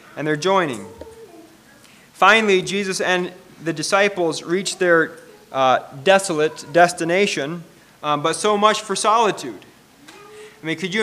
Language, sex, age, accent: English, male, 30-49, American